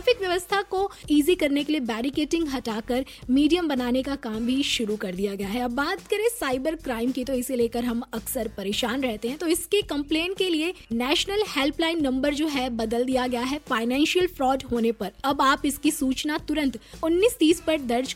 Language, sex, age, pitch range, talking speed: Hindi, female, 20-39, 245-320 Hz, 195 wpm